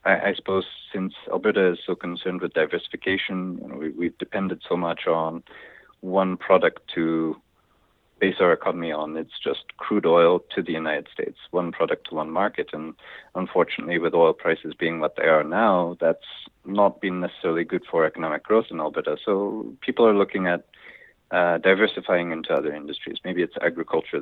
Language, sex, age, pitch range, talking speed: English, male, 40-59, 85-100 Hz, 165 wpm